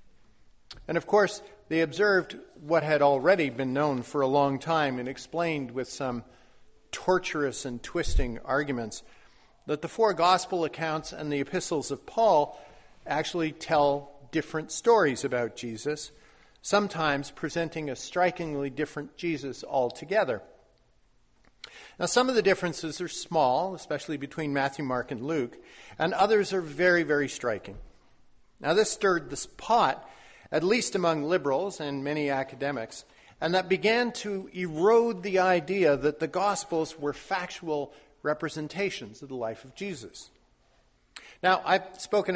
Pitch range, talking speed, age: 140-185 Hz, 135 wpm, 50-69